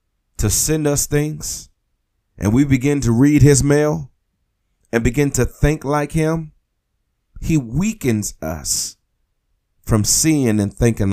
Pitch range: 95-135 Hz